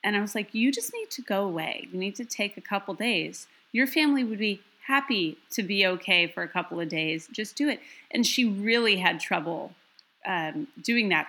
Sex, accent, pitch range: female, American, 185-240 Hz